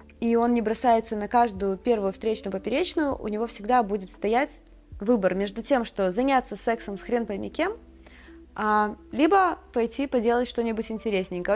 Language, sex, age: Russian, female, 20-39